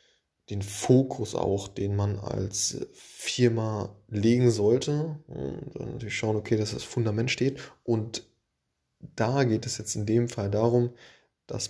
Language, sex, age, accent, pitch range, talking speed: German, male, 20-39, German, 100-120 Hz, 145 wpm